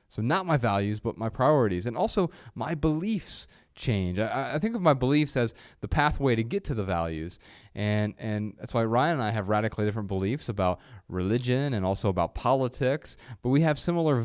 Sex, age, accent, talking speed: male, 30-49, American, 200 wpm